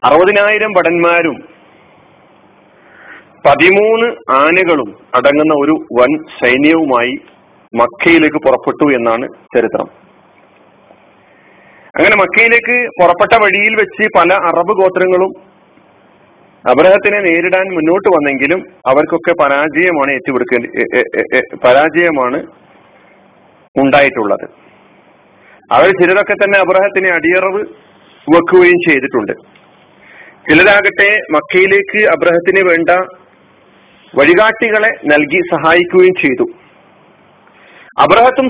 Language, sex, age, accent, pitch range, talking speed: Malayalam, male, 40-59, native, 160-205 Hz, 70 wpm